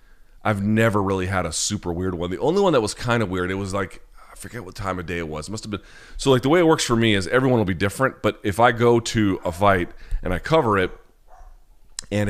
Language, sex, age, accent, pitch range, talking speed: English, male, 30-49, American, 85-100 Hz, 275 wpm